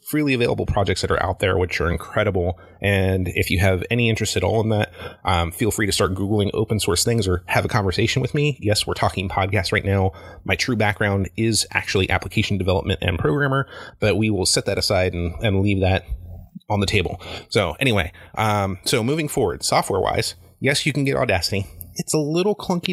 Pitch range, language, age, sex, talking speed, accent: 95-115 Hz, English, 30-49, male, 210 wpm, American